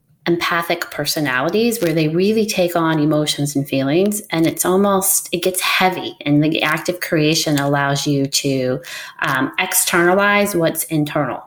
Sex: female